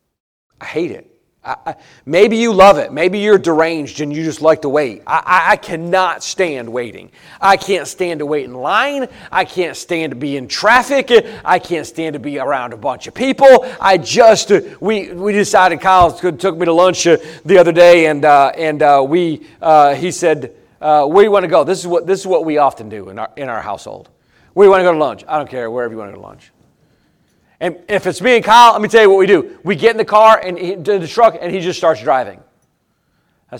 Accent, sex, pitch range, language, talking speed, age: American, male, 150-215 Hz, English, 240 wpm, 40-59